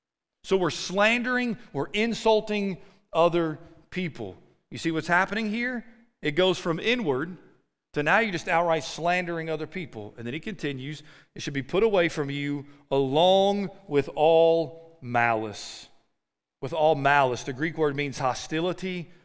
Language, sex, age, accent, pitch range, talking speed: English, male, 40-59, American, 125-180 Hz, 145 wpm